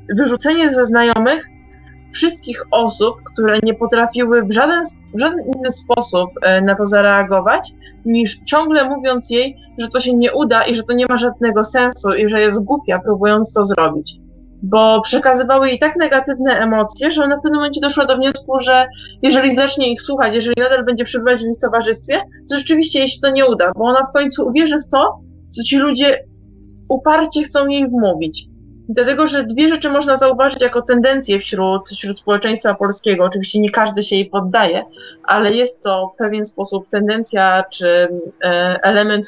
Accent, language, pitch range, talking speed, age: native, Polish, 205-265 Hz, 175 wpm, 20-39